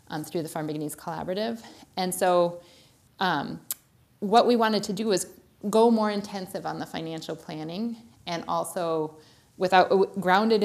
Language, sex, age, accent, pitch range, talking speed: English, female, 30-49, American, 160-200 Hz, 145 wpm